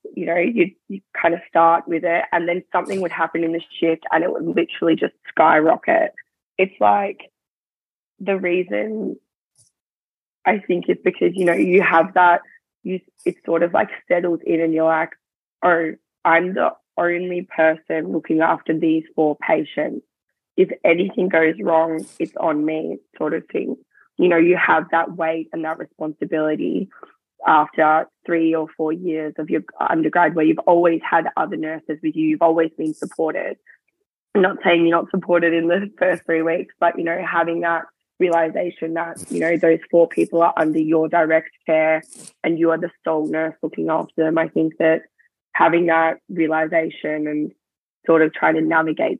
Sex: female